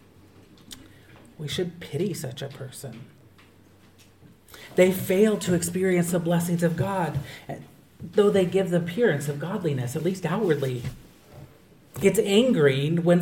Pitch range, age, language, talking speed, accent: 135-175 Hz, 40-59, English, 125 wpm, American